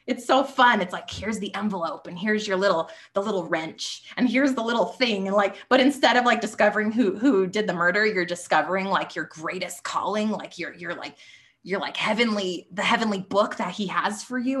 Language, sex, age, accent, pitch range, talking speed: English, female, 20-39, American, 180-235 Hz, 220 wpm